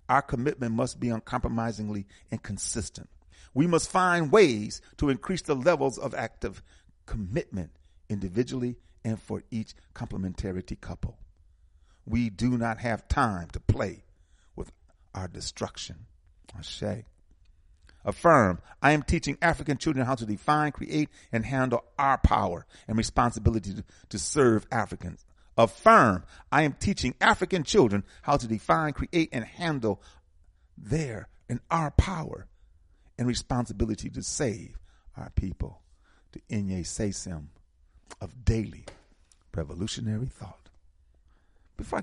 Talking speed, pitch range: 120 wpm, 80-120 Hz